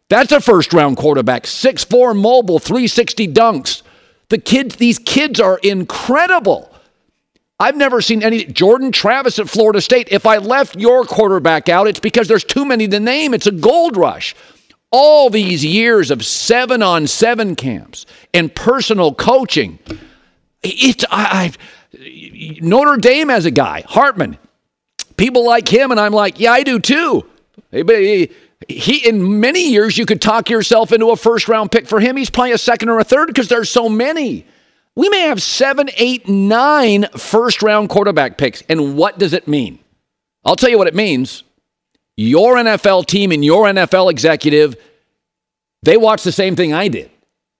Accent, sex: American, male